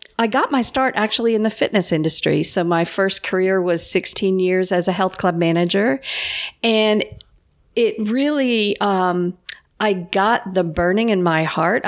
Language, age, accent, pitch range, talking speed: English, 50-69, American, 170-210 Hz, 160 wpm